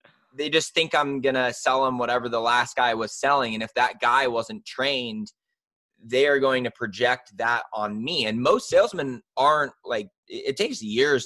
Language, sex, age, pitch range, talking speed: English, male, 20-39, 105-135 Hz, 190 wpm